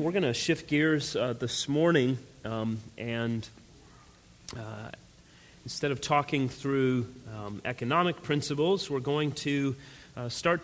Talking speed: 130 wpm